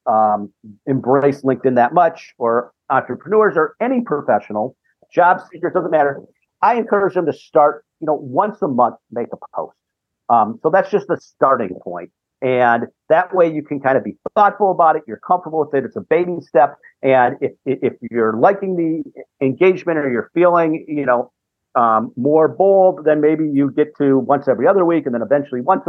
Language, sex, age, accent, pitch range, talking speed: English, male, 50-69, American, 130-175 Hz, 190 wpm